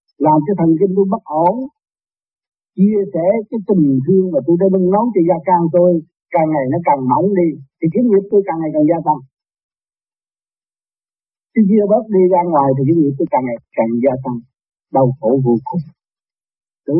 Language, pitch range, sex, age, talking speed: Vietnamese, 160-230 Hz, male, 50-69, 200 wpm